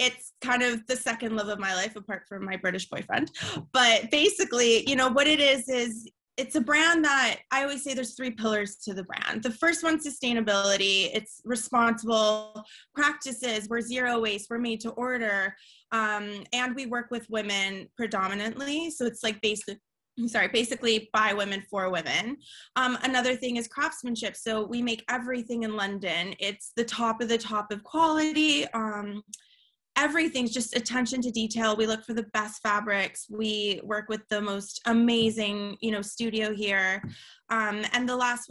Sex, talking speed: female, 175 wpm